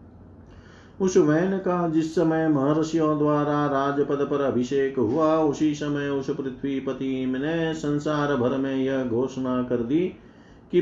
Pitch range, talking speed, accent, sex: 125-145 Hz, 135 wpm, native, male